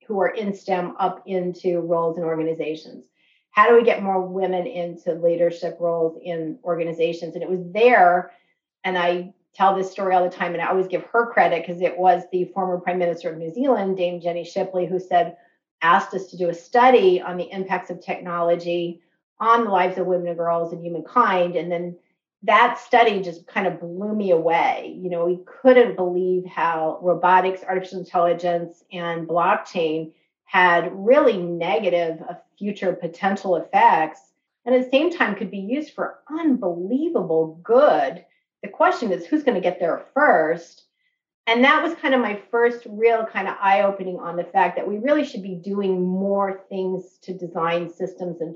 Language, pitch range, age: English, 170-195 Hz, 40-59